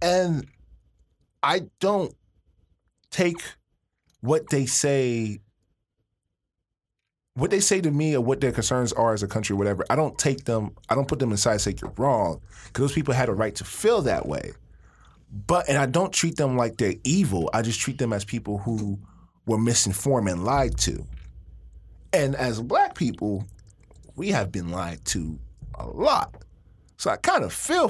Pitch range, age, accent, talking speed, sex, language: 95-145 Hz, 20-39, American, 175 wpm, male, English